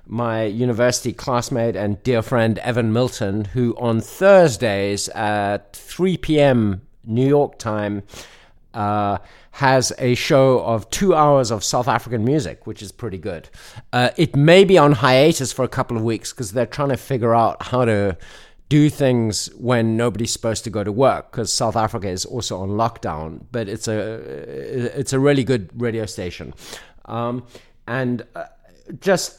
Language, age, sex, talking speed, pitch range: English, 50-69, male, 165 wpm, 110-135 Hz